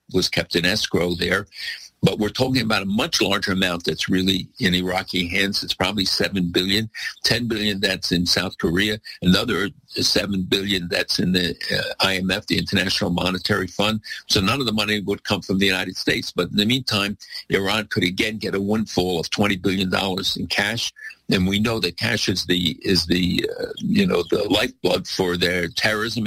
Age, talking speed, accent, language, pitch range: 60-79, 190 wpm, American, English, 90-110 Hz